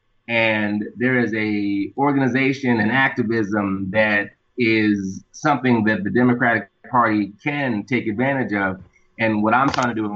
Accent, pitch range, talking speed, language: American, 105-125 Hz, 150 wpm, English